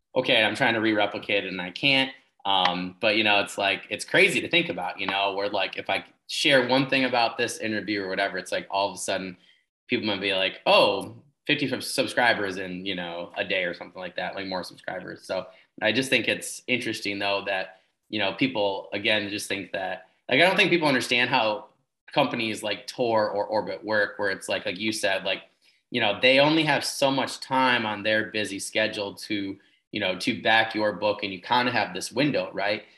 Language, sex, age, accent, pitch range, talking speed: English, male, 20-39, American, 95-115 Hz, 220 wpm